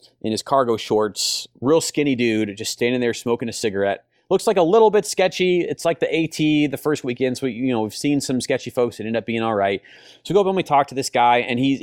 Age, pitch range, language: 30-49, 110-145 Hz, English